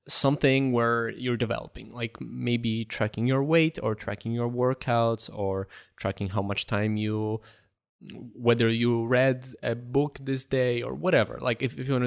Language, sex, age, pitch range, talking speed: English, male, 20-39, 110-130 Hz, 165 wpm